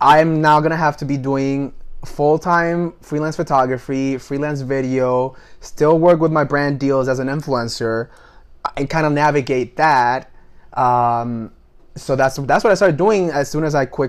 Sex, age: male, 20-39